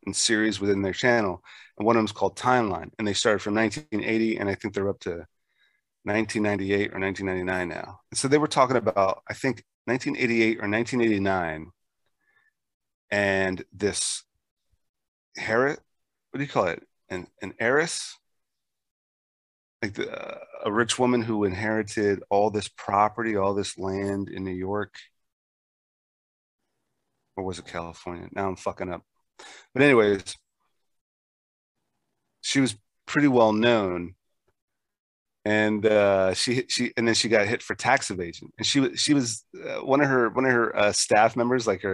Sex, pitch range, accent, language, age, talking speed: male, 95-115 Hz, American, English, 30-49, 150 wpm